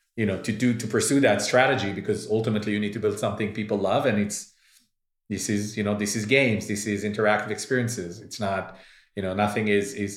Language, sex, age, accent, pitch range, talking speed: English, male, 30-49, Canadian, 100-120 Hz, 220 wpm